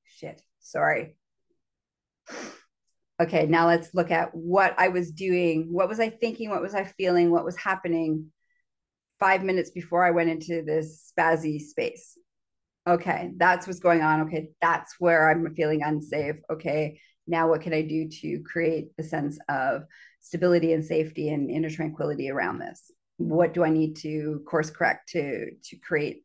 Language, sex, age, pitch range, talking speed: English, female, 30-49, 165-225 Hz, 160 wpm